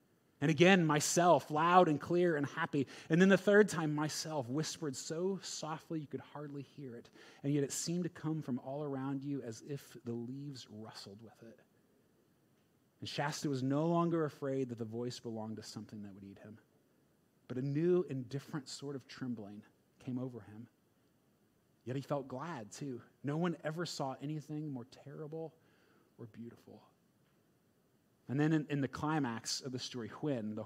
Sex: male